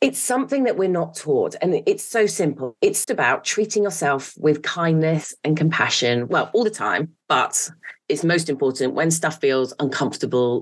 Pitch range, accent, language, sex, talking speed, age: 135-180 Hz, British, English, female, 170 wpm, 30-49